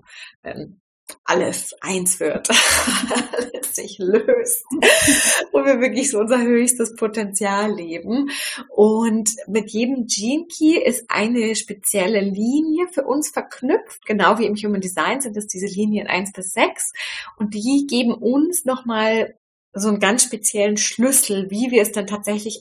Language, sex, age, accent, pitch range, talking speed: German, female, 20-39, German, 205-275 Hz, 140 wpm